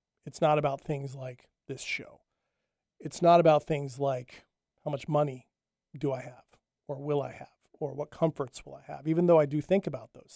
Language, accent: English, American